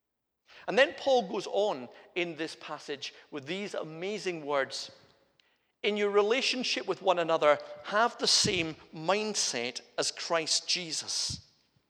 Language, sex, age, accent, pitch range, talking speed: English, male, 50-69, British, 140-190 Hz, 125 wpm